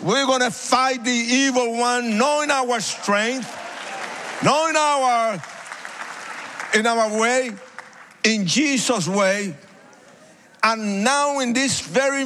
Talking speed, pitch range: 115 wpm, 245-330 Hz